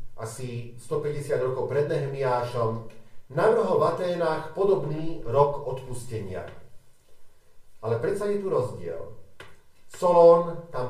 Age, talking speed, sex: 50-69, 95 wpm, male